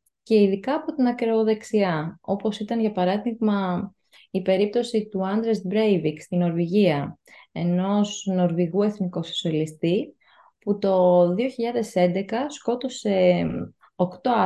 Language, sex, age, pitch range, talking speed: Greek, female, 20-39, 180-235 Hz, 100 wpm